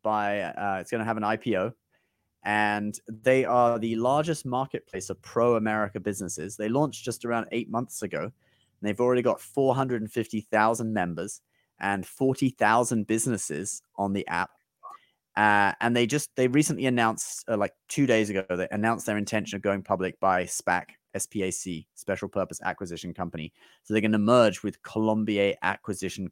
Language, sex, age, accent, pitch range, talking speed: English, male, 30-49, British, 95-125 Hz, 170 wpm